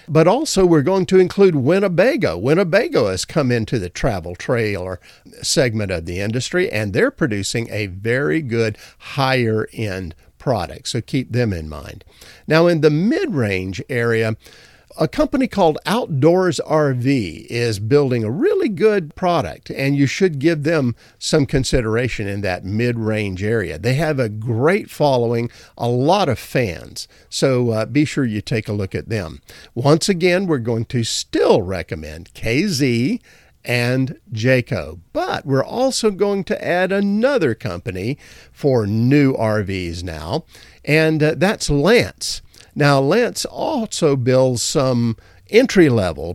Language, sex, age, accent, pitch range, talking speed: English, male, 50-69, American, 105-155 Hz, 140 wpm